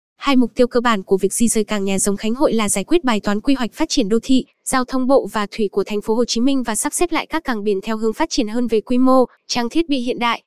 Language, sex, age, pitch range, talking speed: Vietnamese, female, 10-29, 220-265 Hz, 320 wpm